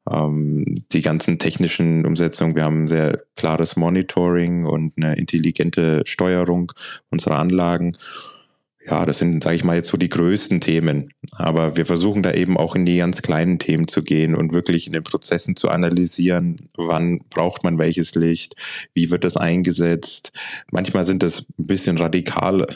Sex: male